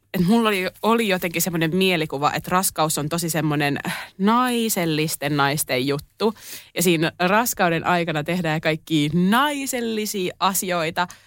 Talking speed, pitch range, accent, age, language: 120 wpm, 145-190 Hz, native, 20-39, Finnish